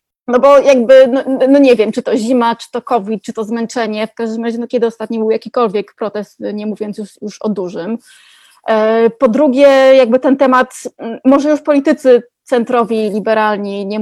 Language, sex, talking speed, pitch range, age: Polish, female, 180 wpm, 210-265 Hz, 20-39